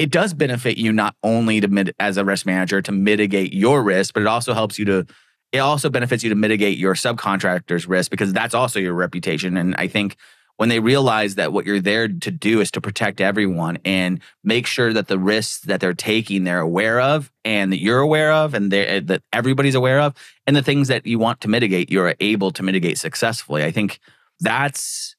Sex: male